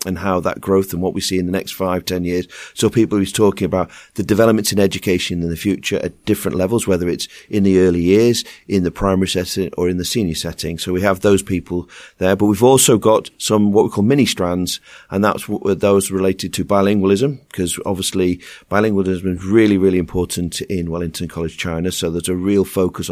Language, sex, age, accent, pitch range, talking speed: English, male, 40-59, British, 90-100 Hz, 210 wpm